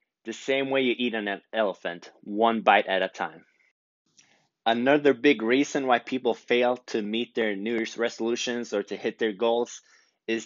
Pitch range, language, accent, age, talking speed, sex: 110-135 Hz, English, American, 20-39, 170 wpm, male